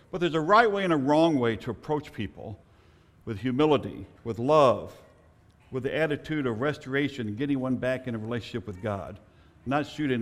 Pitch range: 110-165 Hz